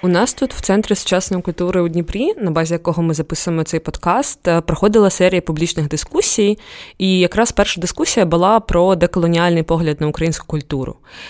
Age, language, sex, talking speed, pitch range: 20-39, Ukrainian, female, 165 wpm, 155-185 Hz